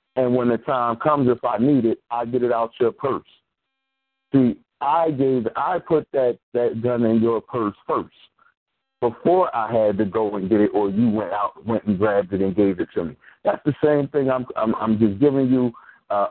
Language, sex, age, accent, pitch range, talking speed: English, male, 50-69, American, 110-130 Hz, 215 wpm